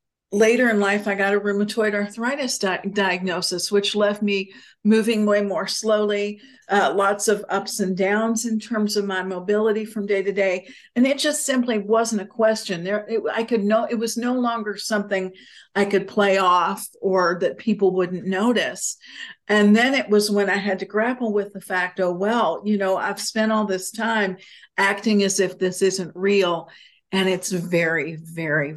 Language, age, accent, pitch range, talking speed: English, 50-69, American, 190-220 Hz, 185 wpm